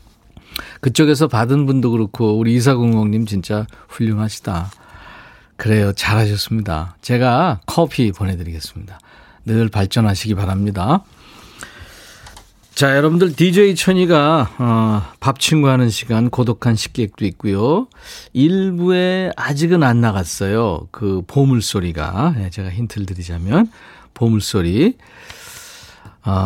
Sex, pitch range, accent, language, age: male, 100-140 Hz, native, Korean, 40-59